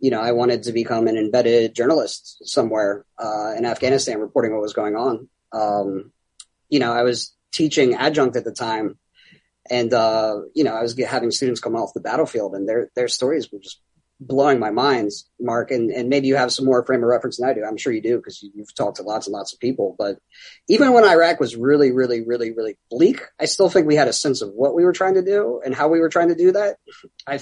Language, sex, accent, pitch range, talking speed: English, male, American, 115-155 Hz, 240 wpm